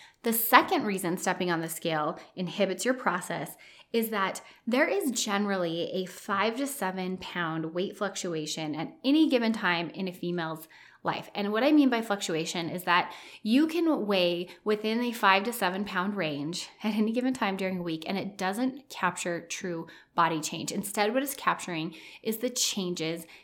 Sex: female